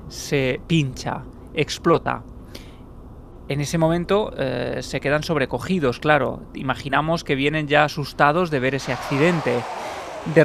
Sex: male